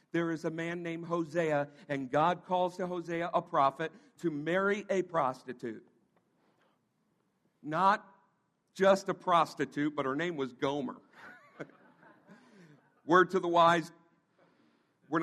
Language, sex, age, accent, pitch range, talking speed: English, male, 50-69, American, 160-240 Hz, 120 wpm